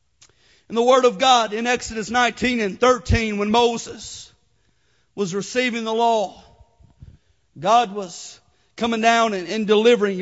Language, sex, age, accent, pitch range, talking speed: English, male, 40-59, American, 215-255 Hz, 130 wpm